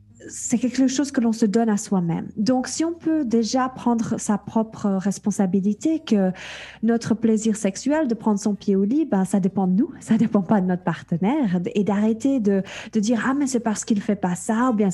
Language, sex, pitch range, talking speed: French, female, 200-245 Hz, 225 wpm